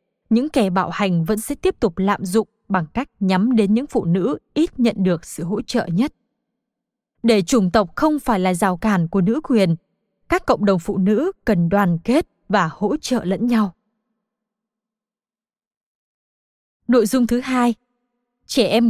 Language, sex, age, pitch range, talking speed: Vietnamese, female, 20-39, 200-240 Hz, 170 wpm